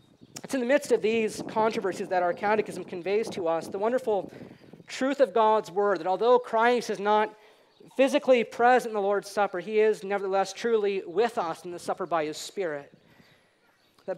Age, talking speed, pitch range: 40-59, 180 wpm, 195-245 Hz